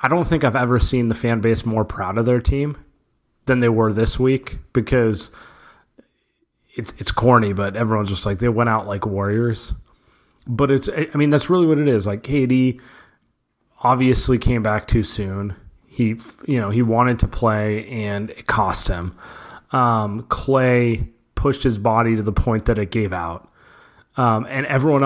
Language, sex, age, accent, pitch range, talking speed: English, male, 30-49, American, 110-130 Hz, 175 wpm